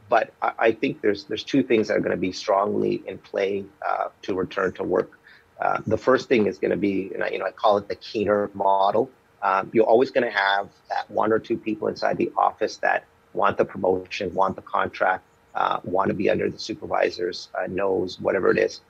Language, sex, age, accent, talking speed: English, male, 30-49, American, 225 wpm